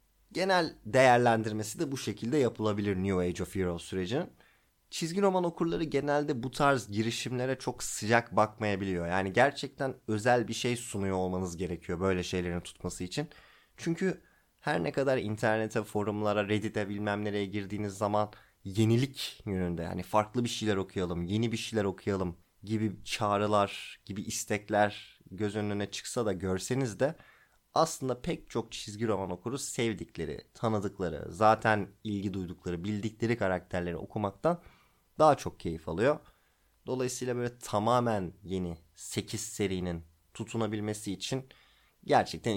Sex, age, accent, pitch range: male, 30-49, native, 95-130 Hz